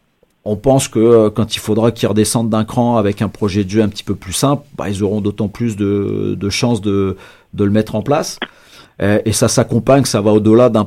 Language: French